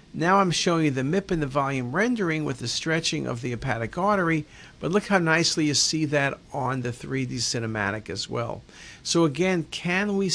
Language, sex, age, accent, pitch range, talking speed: English, male, 50-69, American, 125-165 Hz, 195 wpm